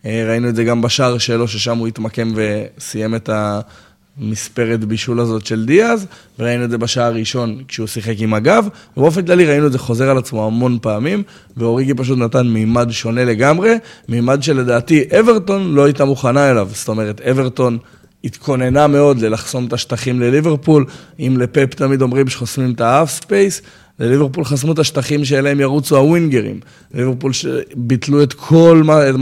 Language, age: Hebrew, 20-39